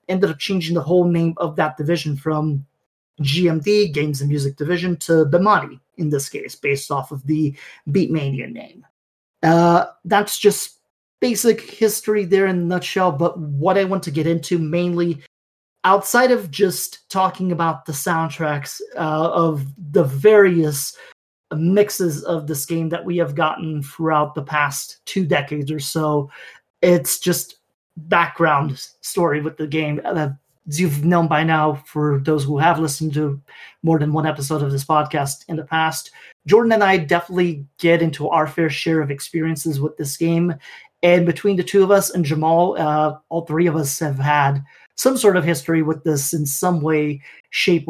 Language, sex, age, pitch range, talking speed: English, male, 30-49, 150-180 Hz, 170 wpm